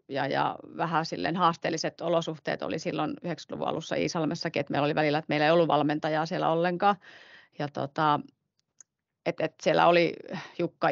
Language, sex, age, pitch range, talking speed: Finnish, female, 30-49, 155-170 Hz, 160 wpm